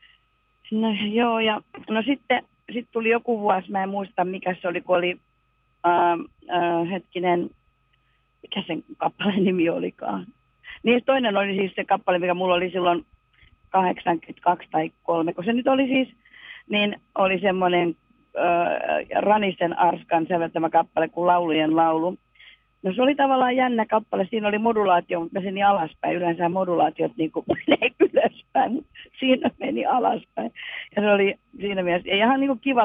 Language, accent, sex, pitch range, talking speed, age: Finnish, native, female, 170-225 Hz, 150 wpm, 40-59